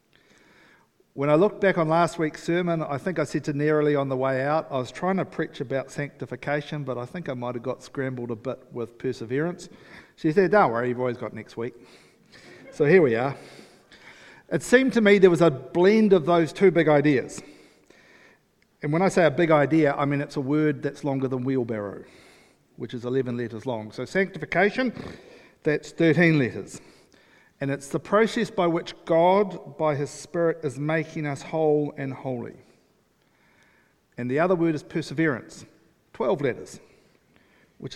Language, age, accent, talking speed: English, 50-69, Australian, 180 wpm